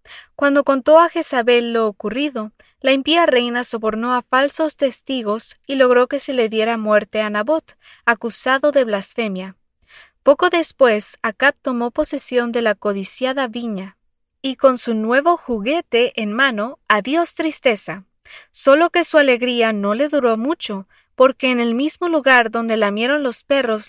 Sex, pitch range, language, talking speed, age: female, 215-280 Hz, English, 150 wpm, 20-39